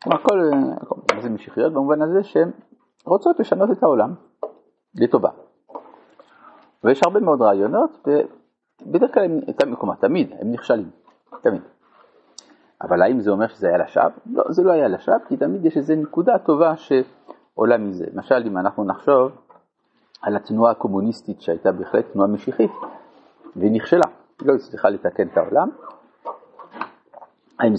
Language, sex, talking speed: Hebrew, male, 135 wpm